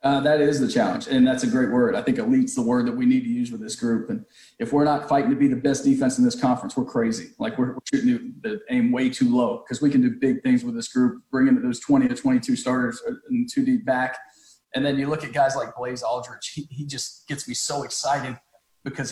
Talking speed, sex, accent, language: 265 wpm, male, American, English